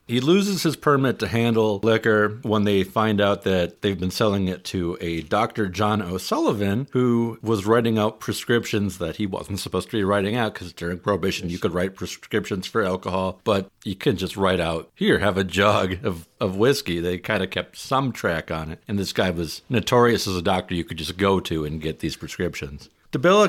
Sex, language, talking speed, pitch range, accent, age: male, English, 210 wpm, 90-110 Hz, American, 50-69